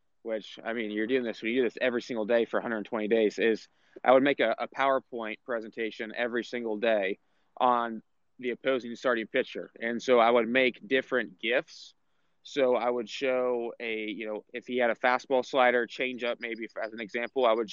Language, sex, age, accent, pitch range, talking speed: English, male, 20-39, American, 115-130 Hz, 200 wpm